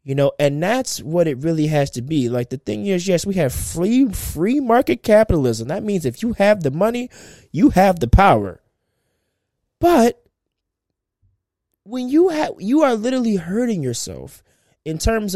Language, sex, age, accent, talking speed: English, male, 20-39, American, 170 wpm